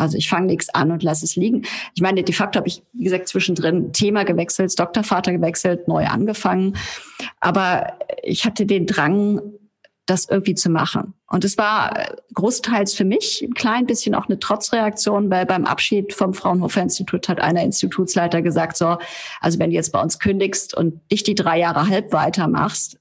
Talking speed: 180 wpm